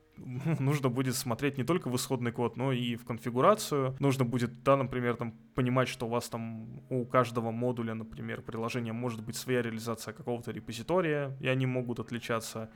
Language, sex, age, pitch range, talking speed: Russian, male, 20-39, 115-130 Hz, 175 wpm